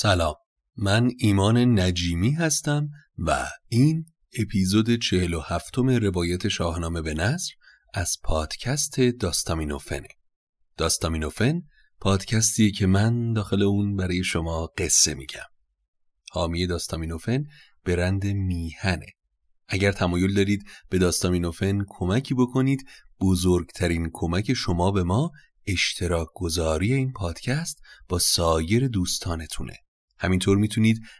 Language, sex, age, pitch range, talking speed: Persian, male, 30-49, 90-120 Hz, 100 wpm